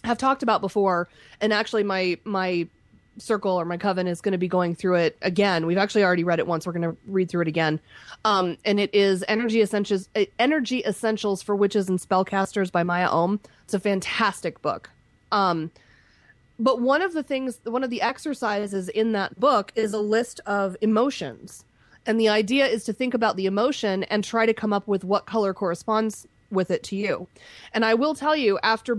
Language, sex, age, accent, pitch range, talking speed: English, female, 20-39, American, 180-225 Hz, 205 wpm